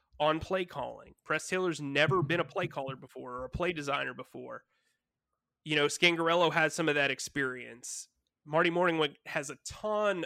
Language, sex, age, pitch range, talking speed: English, male, 30-49, 140-170 Hz, 170 wpm